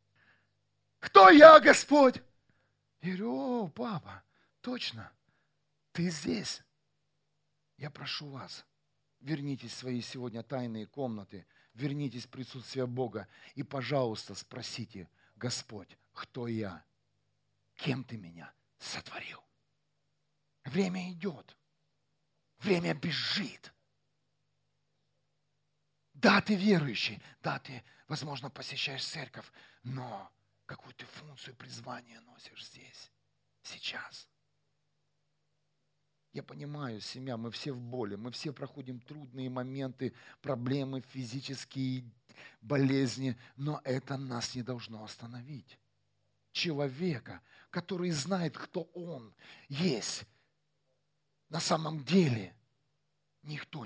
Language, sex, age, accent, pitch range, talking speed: Russian, male, 40-59, native, 125-150 Hz, 95 wpm